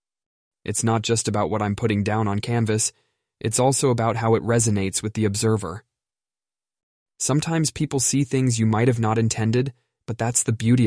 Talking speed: 175 wpm